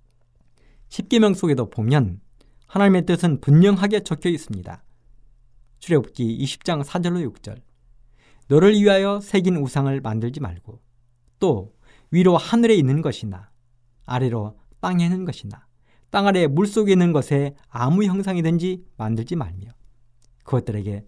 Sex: male